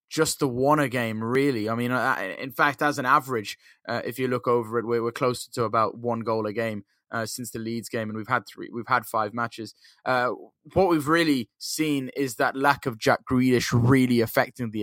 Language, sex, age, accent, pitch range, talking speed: English, male, 20-39, British, 120-150 Hz, 220 wpm